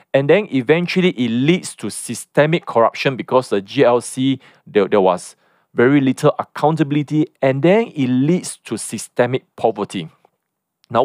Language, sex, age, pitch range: English, male, 40-59, 125-180 Hz